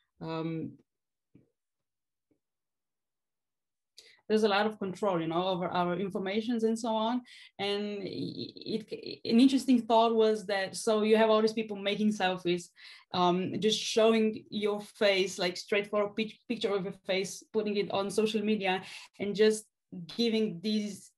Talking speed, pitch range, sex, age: 145 wpm, 180-220 Hz, female, 20-39